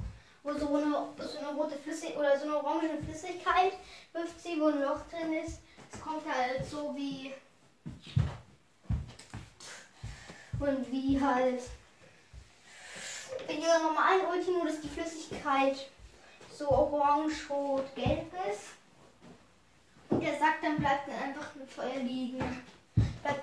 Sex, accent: female, German